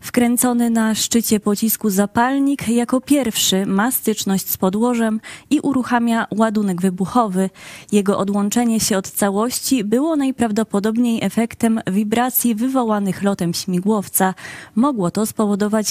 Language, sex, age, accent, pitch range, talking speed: Polish, female, 20-39, native, 200-245 Hz, 115 wpm